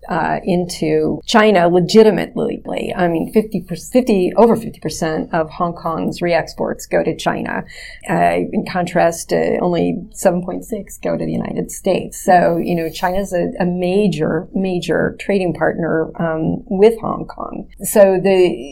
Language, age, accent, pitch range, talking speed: English, 40-59, American, 170-195 Hz, 140 wpm